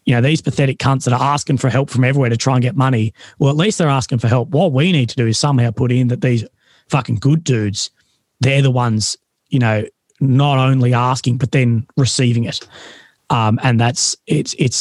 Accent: Australian